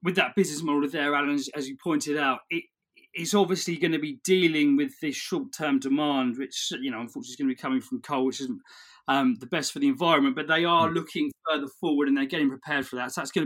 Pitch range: 135-210 Hz